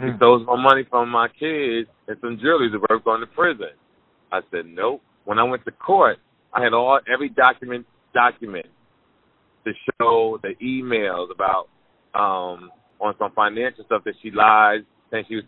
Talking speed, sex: 175 wpm, male